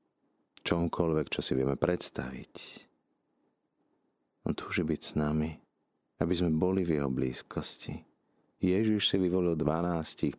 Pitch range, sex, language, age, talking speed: 75-90 Hz, male, Slovak, 50-69, 115 wpm